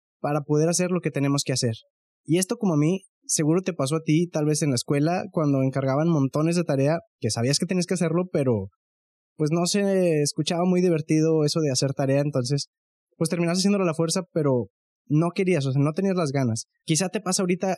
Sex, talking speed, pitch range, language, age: male, 225 wpm, 140-175 Hz, Spanish, 20-39